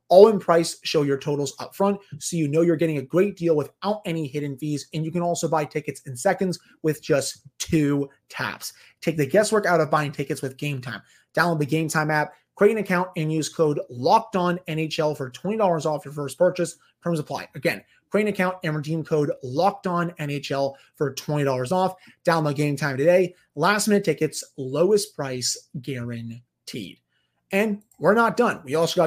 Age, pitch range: 30-49, 150-185 Hz